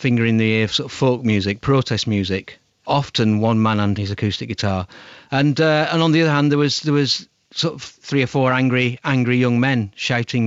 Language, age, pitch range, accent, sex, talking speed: English, 40-59, 110-130 Hz, British, male, 225 wpm